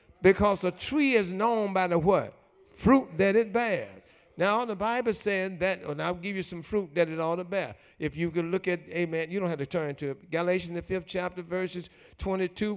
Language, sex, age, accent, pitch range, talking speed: English, male, 60-79, American, 180-240 Hz, 220 wpm